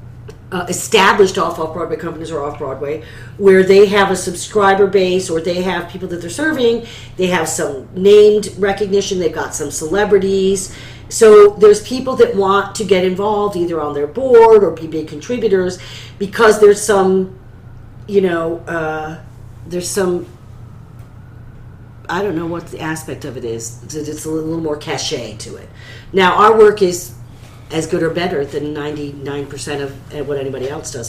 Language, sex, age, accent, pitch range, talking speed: English, female, 40-59, American, 140-195 Hz, 160 wpm